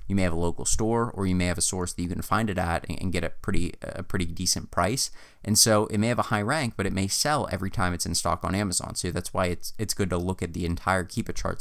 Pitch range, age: 85-105 Hz, 30-49